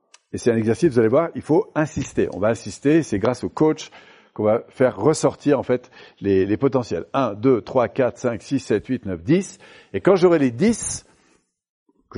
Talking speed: 205 wpm